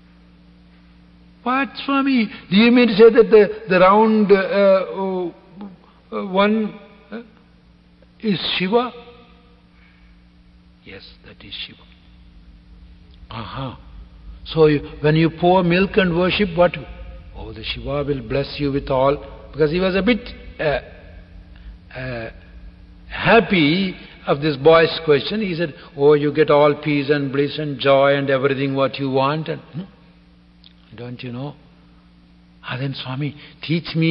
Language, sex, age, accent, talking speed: English, male, 60-79, Indian, 135 wpm